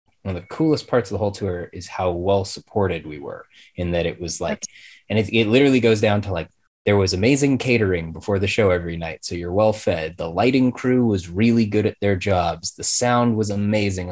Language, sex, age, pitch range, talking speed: English, male, 20-39, 90-105 Hz, 230 wpm